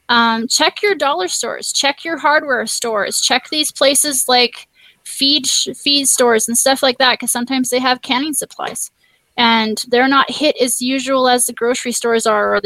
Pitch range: 245-315 Hz